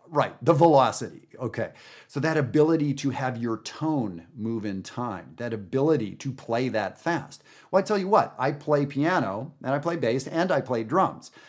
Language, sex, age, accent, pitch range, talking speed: English, male, 40-59, American, 105-135 Hz, 190 wpm